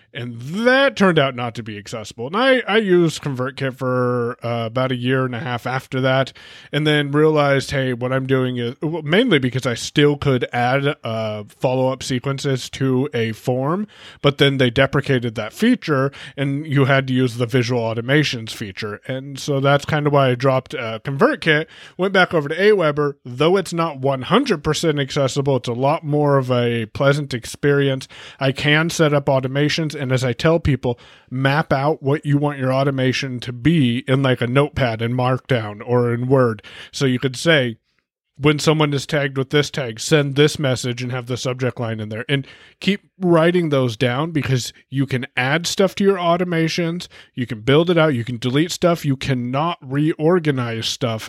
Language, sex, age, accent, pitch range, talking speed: English, male, 30-49, American, 125-155 Hz, 190 wpm